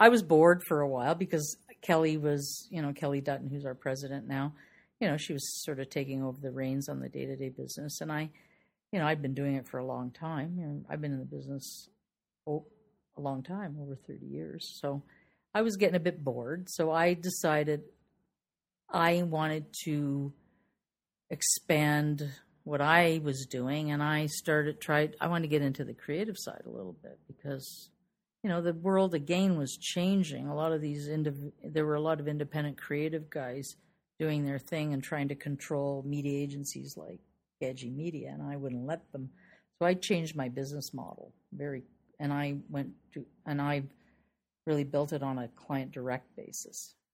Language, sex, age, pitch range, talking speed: English, female, 50-69, 140-165 Hz, 190 wpm